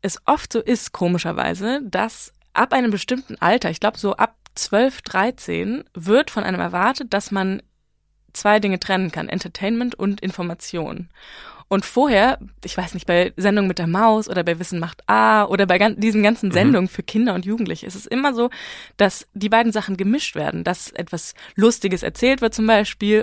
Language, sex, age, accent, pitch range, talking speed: German, female, 20-39, German, 180-225 Hz, 185 wpm